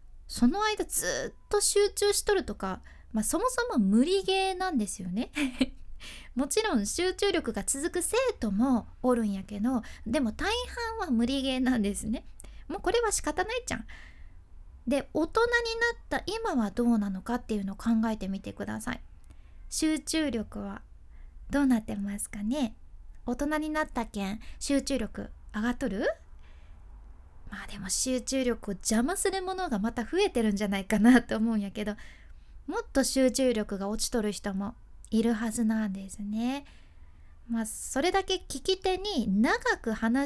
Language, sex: Japanese, female